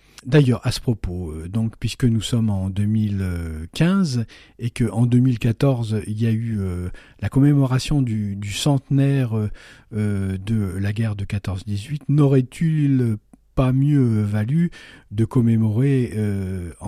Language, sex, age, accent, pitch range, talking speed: French, male, 50-69, French, 110-140 Hz, 125 wpm